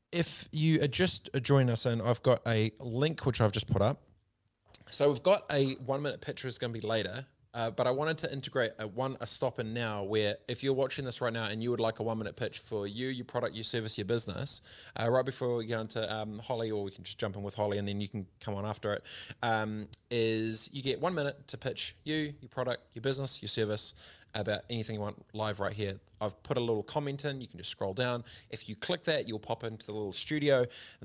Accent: Australian